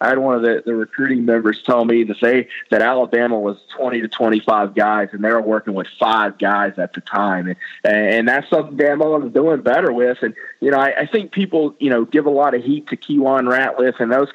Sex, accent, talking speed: male, American, 240 wpm